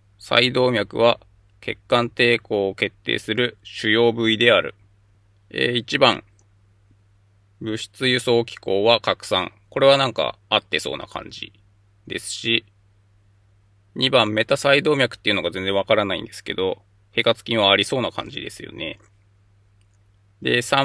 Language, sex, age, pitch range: Japanese, male, 20-39, 100-115 Hz